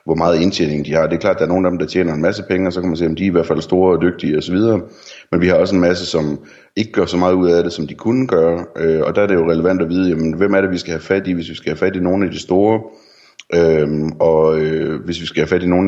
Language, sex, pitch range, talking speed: Danish, male, 80-95 Hz, 330 wpm